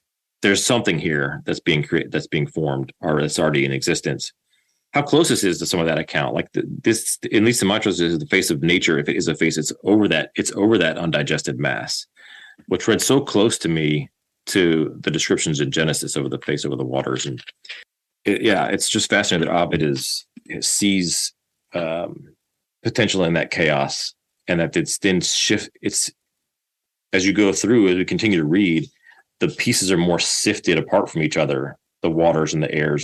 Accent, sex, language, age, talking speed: American, male, English, 30-49, 200 wpm